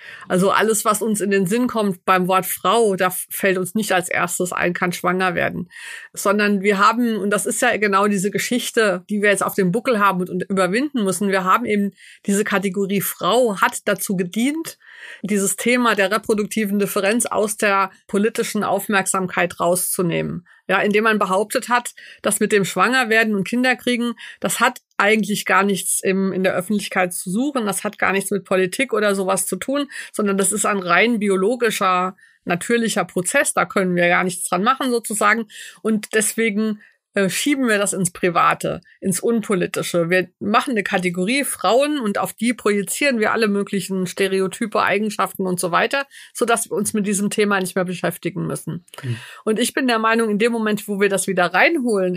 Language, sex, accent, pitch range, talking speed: German, female, German, 185-225 Hz, 180 wpm